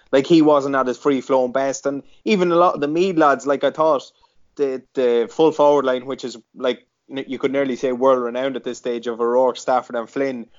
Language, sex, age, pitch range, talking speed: English, male, 20-39, 120-140 Hz, 220 wpm